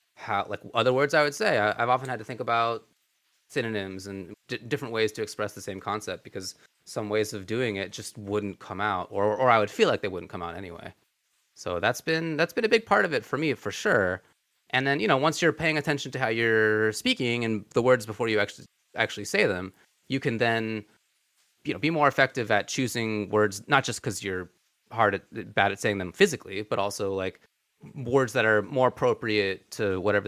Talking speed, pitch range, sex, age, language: 220 wpm, 100-135 Hz, male, 30-49, English